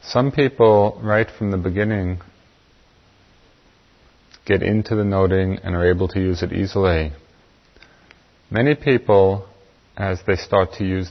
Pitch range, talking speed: 90-105 Hz, 130 wpm